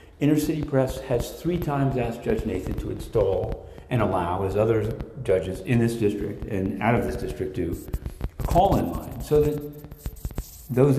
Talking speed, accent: 175 wpm, American